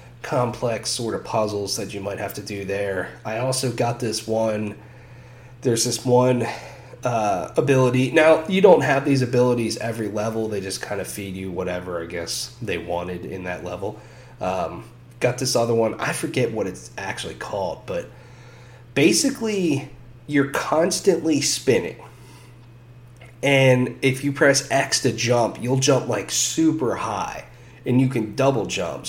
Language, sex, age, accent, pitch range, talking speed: English, male, 30-49, American, 110-130 Hz, 155 wpm